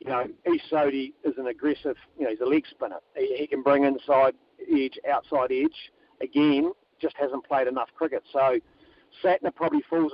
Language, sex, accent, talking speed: English, male, Australian, 170 wpm